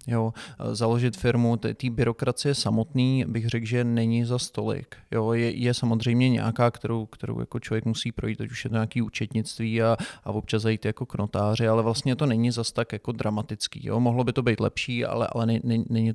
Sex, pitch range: male, 110-120 Hz